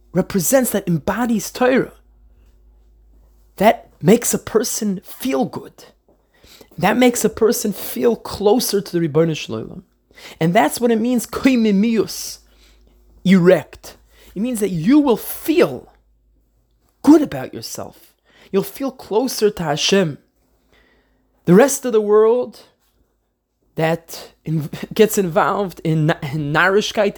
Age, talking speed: 20-39, 115 wpm